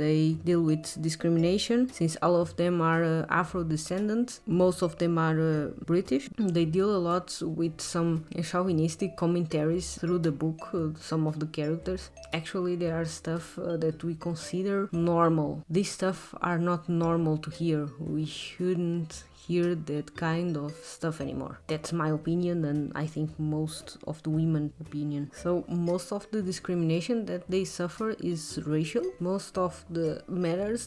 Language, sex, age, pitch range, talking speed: Portuguese, female, 20-39, 155-180 Hz, 160 wpm